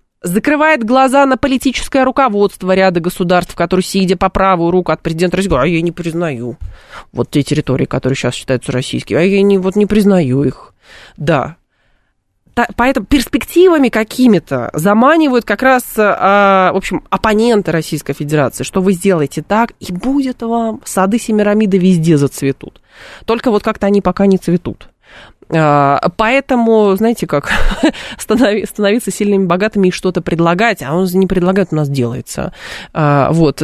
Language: Russian